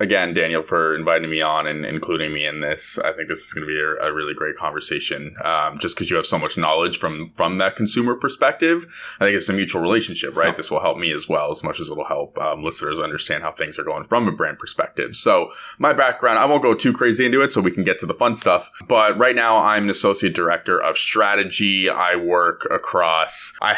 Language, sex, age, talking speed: English, male, 20-39, 240 wpm